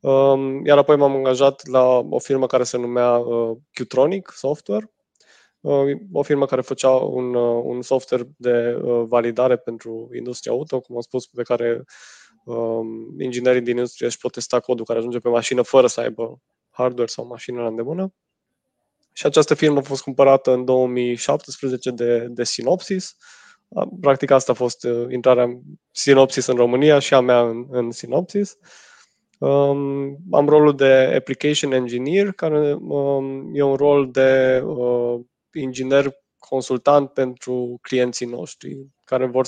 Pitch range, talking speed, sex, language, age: 120-140 Hz, 145 wpm, male, Romanian, 20-39